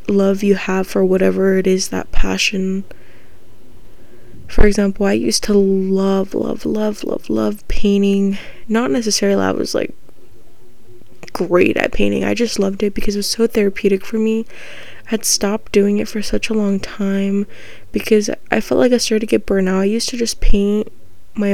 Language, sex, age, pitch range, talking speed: English, female, 20-39, 190-225 Hz, 180 wpm